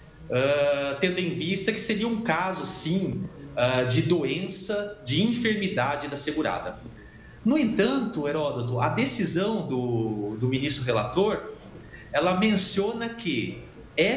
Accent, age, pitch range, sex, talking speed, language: Brazilian, 40-59, 125-200 Hz, male, 125 wpm, Portuguese